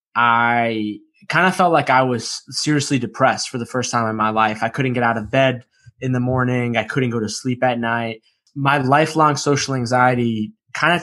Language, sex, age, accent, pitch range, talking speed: English, male, 20-39, American, 115-140 Hz, 205 wpm